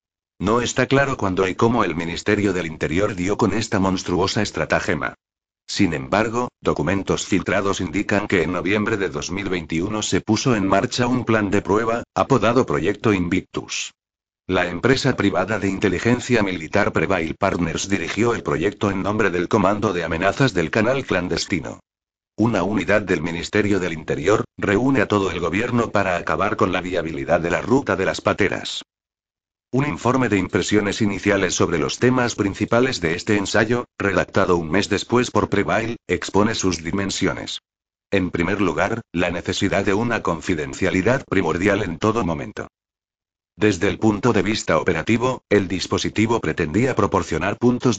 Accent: Spanish